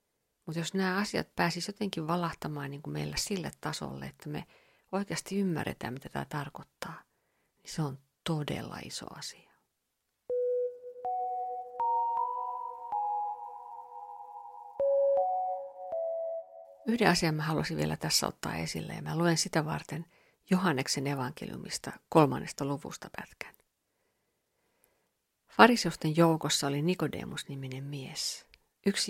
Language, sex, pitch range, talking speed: Finnish, female, 140-195 Hz, 100 wpm